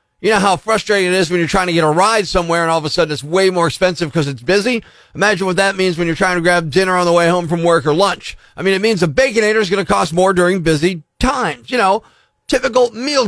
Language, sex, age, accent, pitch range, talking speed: English, male, 40-59, American, 165-215 Hz, 280 wpm